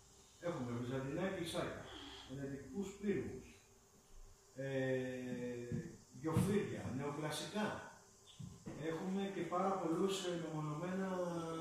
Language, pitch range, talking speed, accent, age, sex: Greek, 130-190 Hz, 65 wpm, native, 40-59, male